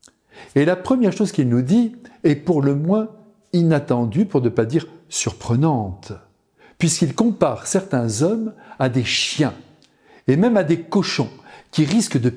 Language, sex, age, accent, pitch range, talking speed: French, male, 60-79, French, 130-200 Hz, 155 wpm